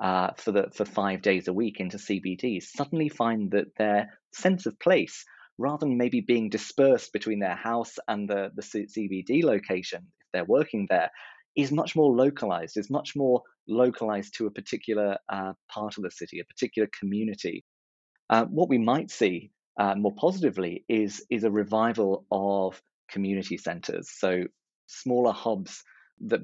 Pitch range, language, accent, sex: 100-120 Hz, English, British, male